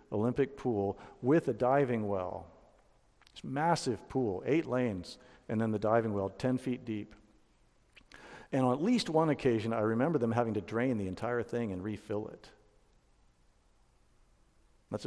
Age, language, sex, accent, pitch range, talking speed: 50-69, English, male, American, 115-135 Hz, 155 wpm